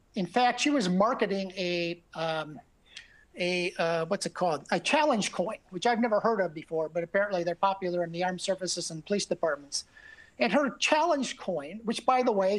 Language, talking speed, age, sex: English, 190 wpm, 50-69, male